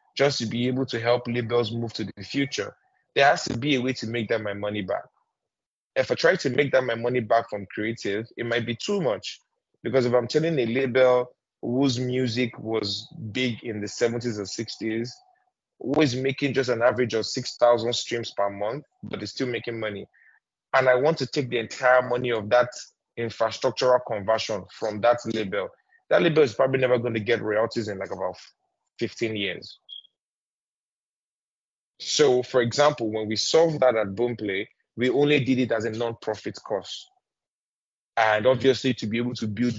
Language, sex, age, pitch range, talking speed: English, male, 20-39, 110-130 Hz, 185 wpm